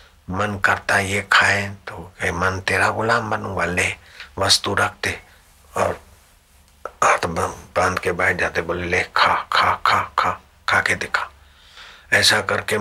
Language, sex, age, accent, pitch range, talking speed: Hindi, male, 60-79, native, 85-100 Hz, 145 wpm